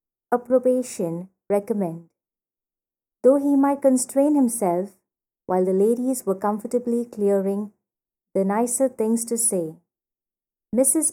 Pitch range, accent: 200-255 Hz, Indian